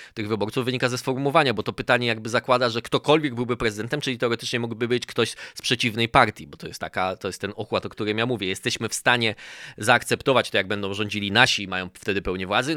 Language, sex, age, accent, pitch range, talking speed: Polish, male, 20-39, native, 110-150 Hz, 225 wpm